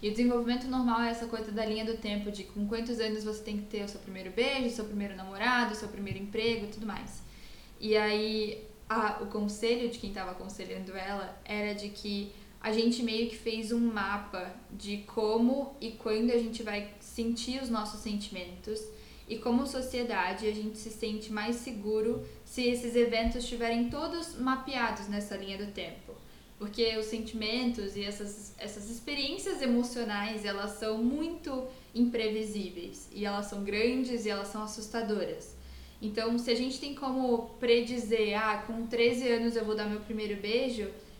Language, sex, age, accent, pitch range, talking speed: Portuguese, female, 10-29, Brazilian, 210-240 Hz, 175 wpm